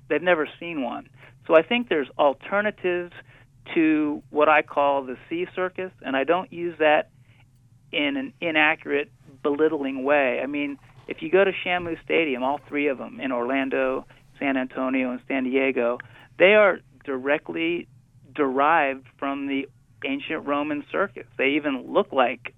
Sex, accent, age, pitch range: male, American, 40-59, 130-155 Hz